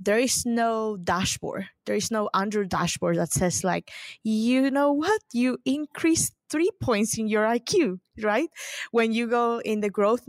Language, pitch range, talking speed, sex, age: English, 180-225 Hz, 170 wpm, female, 20-39